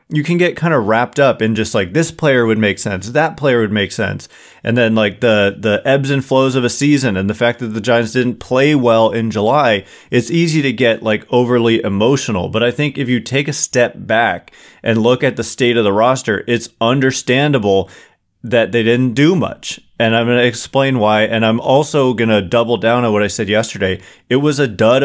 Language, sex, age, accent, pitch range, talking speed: English, male, 30-49, American, 110-130 Hz, 230 wpm